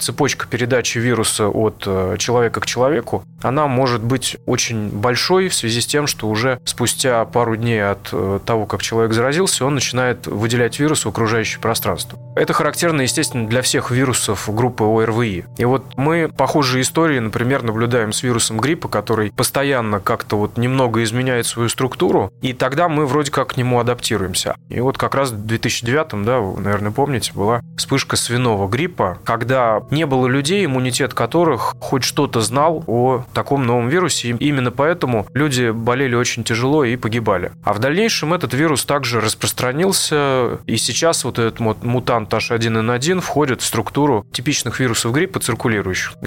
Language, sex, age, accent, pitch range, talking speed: Russian, male, 20-39, native, 110-135 Hz, 160 wpm